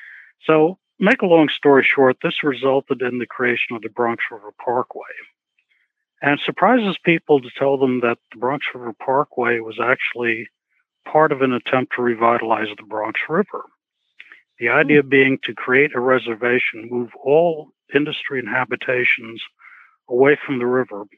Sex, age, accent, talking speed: male, 60-79, American, 155 wpm